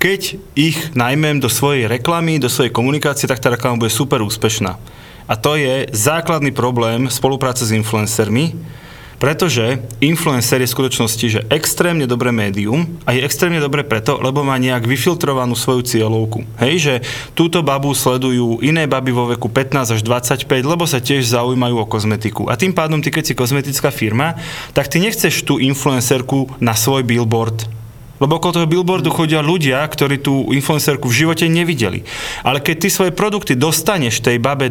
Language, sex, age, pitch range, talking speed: Slovak, male, 30-49, 120-150 Hz, 165 wpm